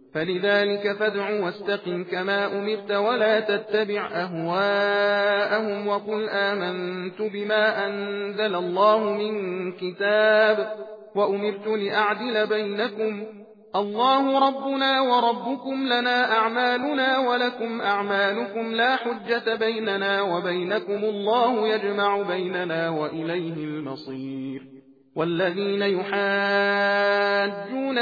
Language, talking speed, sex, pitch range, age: Persian, 75 wpm, male, 180-220 Hz, 40-59